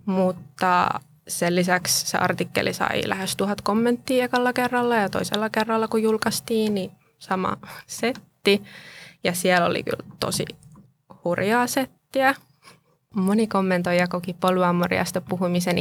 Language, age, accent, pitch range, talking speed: Finnish, 20-39, native, 175-220 Hz, 120 wpm